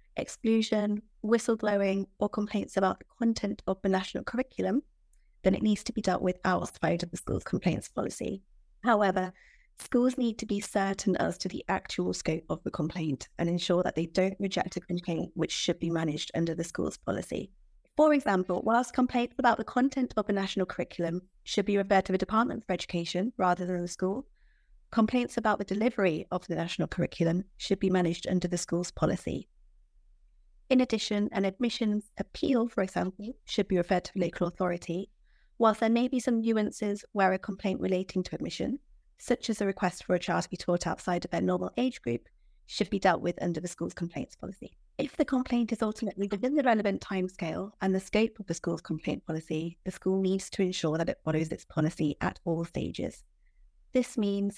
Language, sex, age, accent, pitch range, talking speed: English, female, 30-49, British, 175-215 Hz, 190 wpm